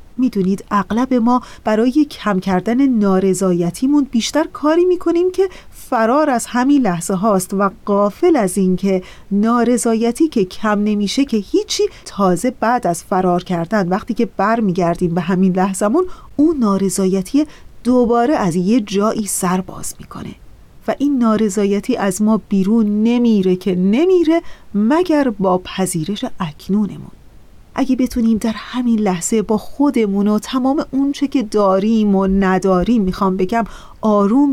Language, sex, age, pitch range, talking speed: Persian, female, 40-59, 195-250 Hz, 135 wpm